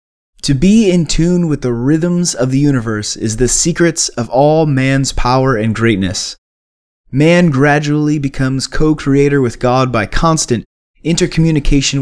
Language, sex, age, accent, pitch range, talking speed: English, male, 20-39, American, 120-160 Hz, 140 wpm